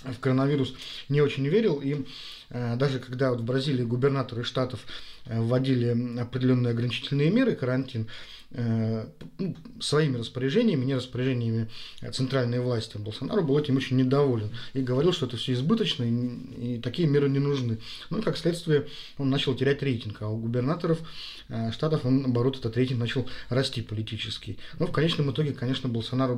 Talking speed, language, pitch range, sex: 160 wpm, Russian, 120-145 Hz, male